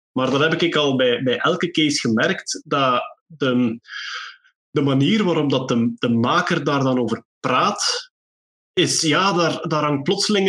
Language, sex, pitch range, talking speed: Dutch, male, 140-190 Hz, 160 wpm